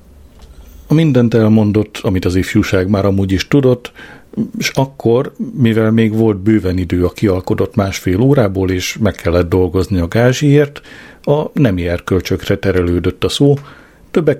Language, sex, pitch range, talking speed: Hungarian, male, 95-125 Hz, 140 wpm